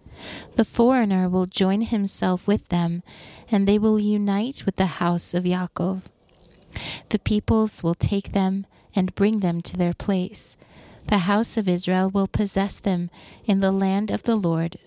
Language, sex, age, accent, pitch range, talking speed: English, female, 30-49, American, 175-200 Hz, 160 wpm